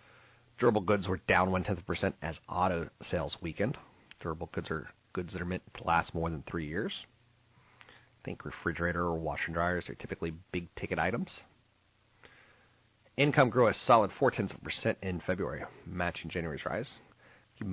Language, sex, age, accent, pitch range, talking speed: English, male, 40-59, American, 85-105 Hz, 170 wpm